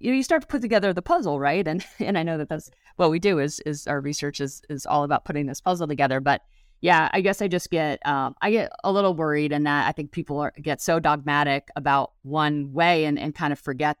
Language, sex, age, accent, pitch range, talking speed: English, female, 30-49, American, 135-160 Hz, 260 wpm